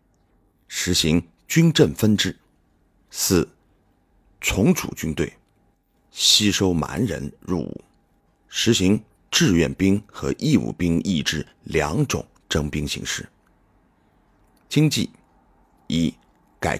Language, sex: Chinese, male